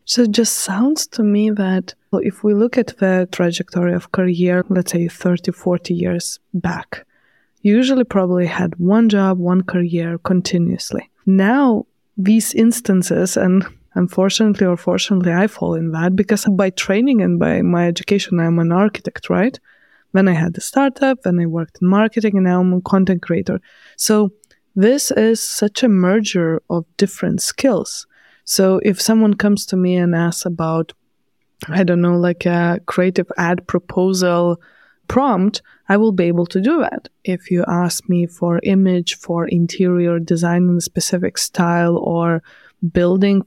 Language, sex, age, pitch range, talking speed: English, female, 20-39, 175-210 Hz, 165 wpm